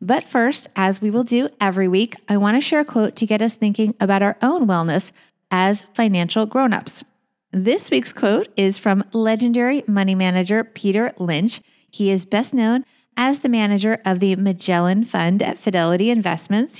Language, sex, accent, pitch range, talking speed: English, female, American, 185-235 Hz, 175 wpm